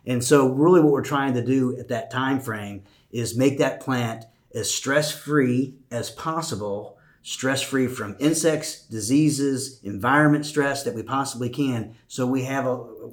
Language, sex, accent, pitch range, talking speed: English, male, American, 115-135 Hz, 150 wpm